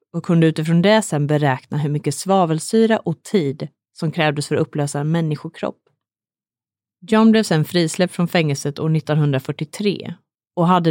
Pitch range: 150-200 Hz